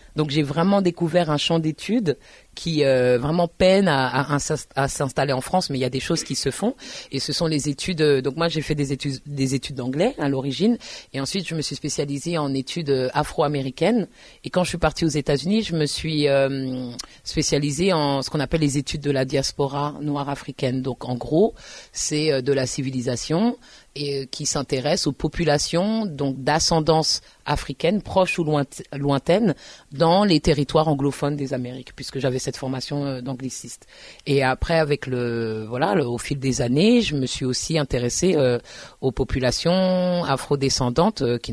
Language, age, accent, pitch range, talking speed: French, 30-49, French, 135-165 Hz, 170 wpm